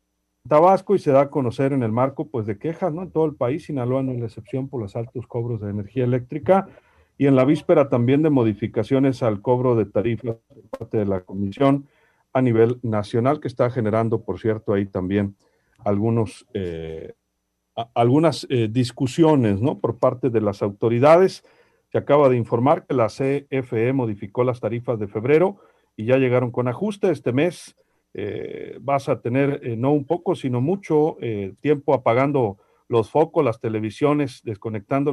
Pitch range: 115-145 Hz